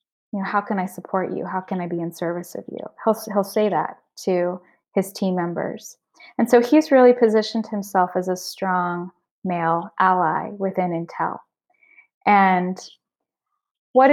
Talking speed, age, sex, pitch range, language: 160 wpm, 20-39, female, 185-225 Hz, English